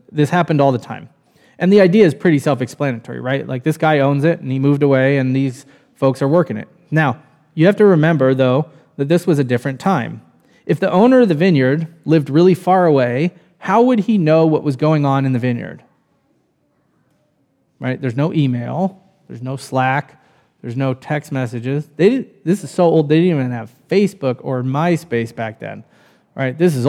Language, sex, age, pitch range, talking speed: English, male, 20-39, 130-180 Hz, 200 wpm